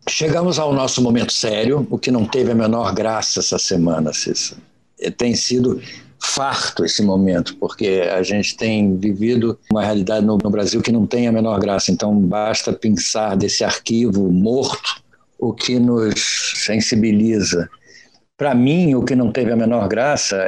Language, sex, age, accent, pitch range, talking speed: Portuguese, male, 60-79, Brazilian, 110-140 Hz, 160 wpm